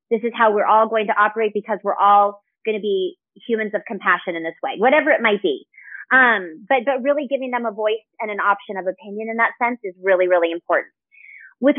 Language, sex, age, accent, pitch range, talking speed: English, female, 30-49, American, 220-320 Hz, 230 wpm